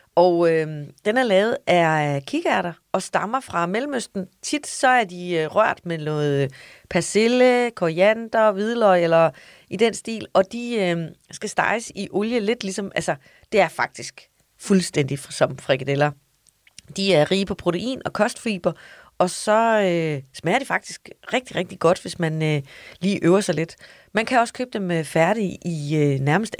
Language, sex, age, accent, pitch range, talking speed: Danish, female, 30-49, native, 160-225 Hz, 155 wpm